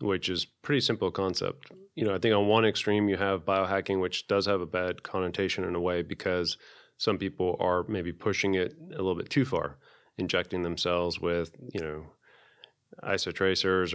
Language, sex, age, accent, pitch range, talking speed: English, male, 30-49, American, 90-100 Hz, 180 wpm